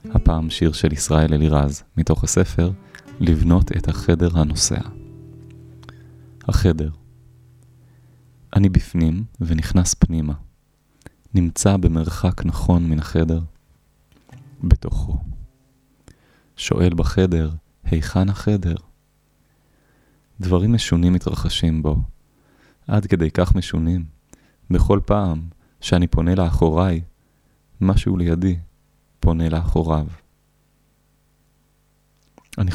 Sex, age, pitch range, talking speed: male, 20-39, 80-95 Hz, 80 wpm